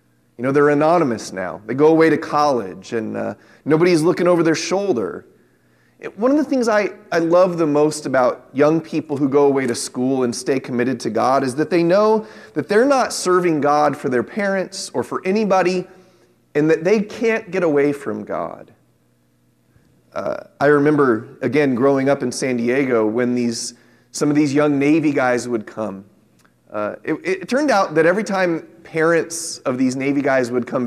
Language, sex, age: English, male, 30-49